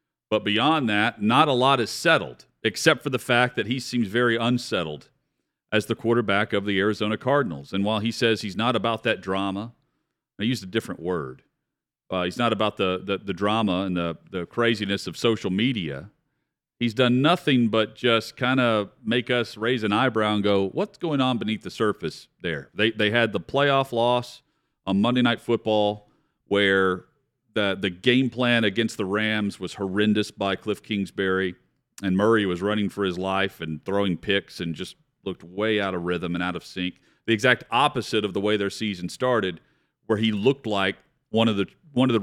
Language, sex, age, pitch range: English, male, 40-59, 100-120 Hz